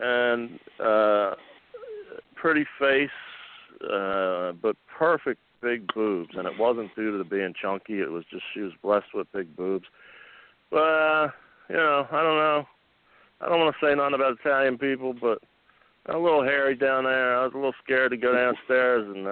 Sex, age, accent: male, 50-69, American